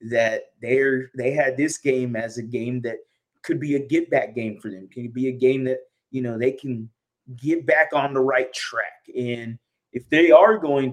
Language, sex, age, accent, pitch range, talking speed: English, male, 20-39, American, 120-140 Hz, 210 wpm